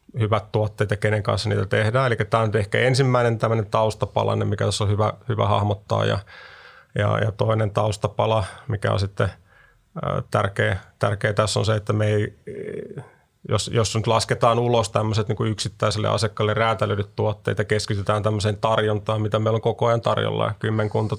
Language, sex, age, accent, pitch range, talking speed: Finnish, male, 30-49, native, 105-115 Hz, 160 wpm